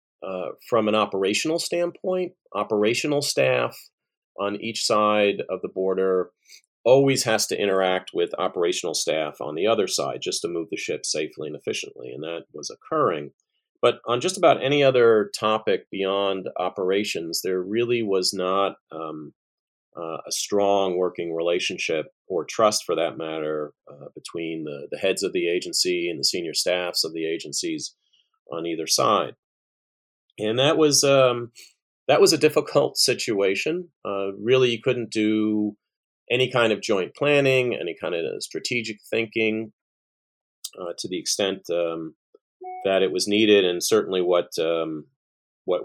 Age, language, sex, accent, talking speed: 40-59, English, male, American, 150 wpm